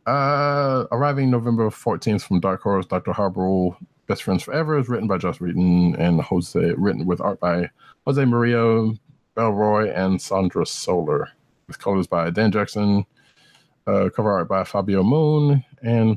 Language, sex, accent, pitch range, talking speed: English, male, American, 90-145 Hz, 150 wpm